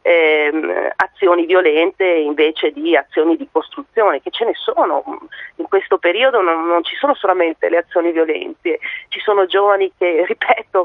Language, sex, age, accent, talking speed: Italian, female, 40-59, native, 155 wpm